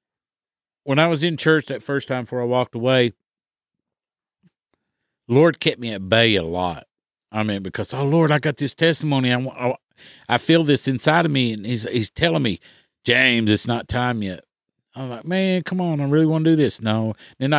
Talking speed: 200 wpm